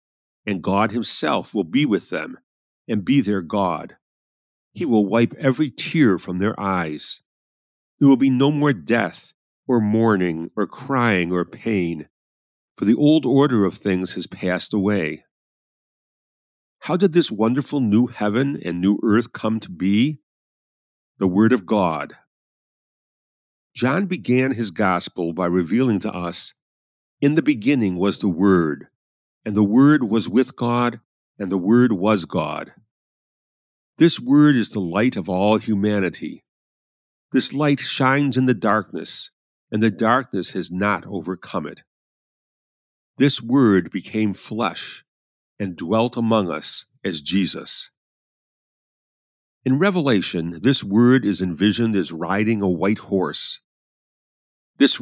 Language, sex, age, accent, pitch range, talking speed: English, male, 50-69, American, 95-130 Hz, 135 wpm